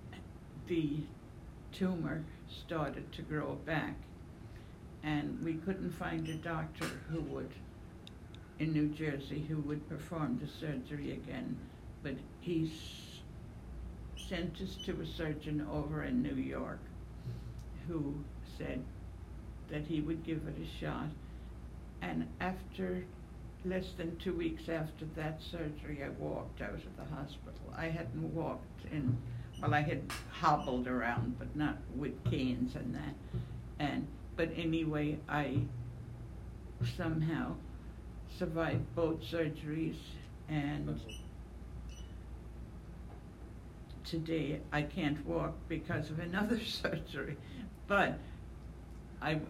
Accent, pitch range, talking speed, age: American, 110-160 Hz, 110 wpm, 70-89